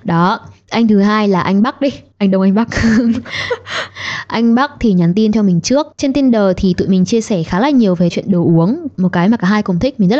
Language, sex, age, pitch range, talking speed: Vietnamese, female, 20-39, 185-230 Hz, 255 wpm